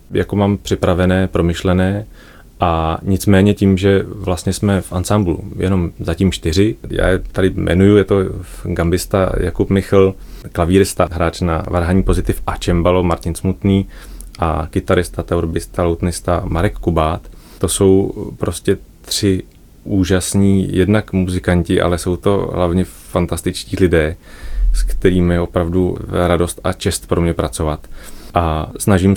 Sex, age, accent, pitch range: male, 30-49, native, 90-100 Hz